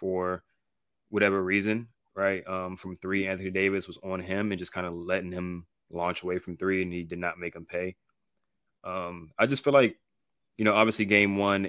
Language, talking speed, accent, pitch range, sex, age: English, 200 wpm, American, 90-100 Hz, male, 20-39